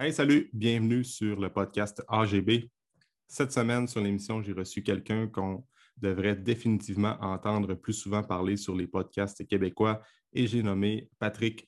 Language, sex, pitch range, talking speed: French, male, 95-110 Hz, 150 wpm